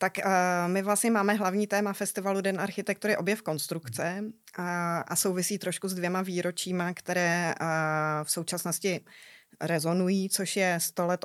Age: 20-39